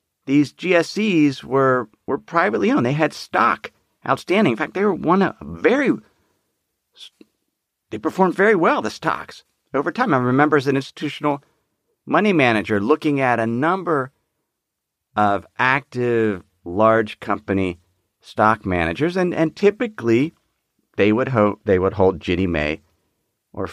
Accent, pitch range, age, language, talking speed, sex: American, 110-175 Hz, 40-59, English, 135 wpm, male